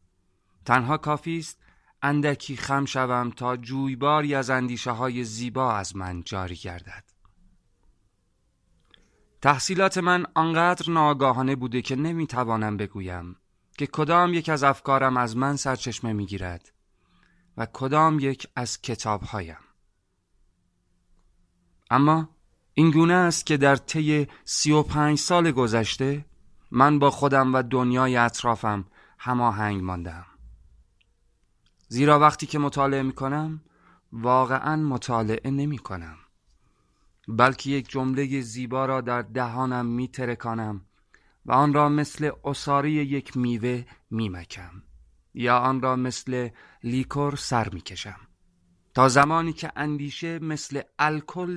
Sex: male